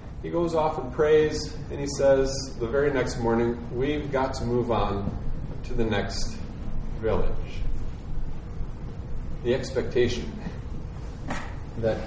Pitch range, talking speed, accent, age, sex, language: 115-145 Hz, 120 wpm, American, 30-49, male, English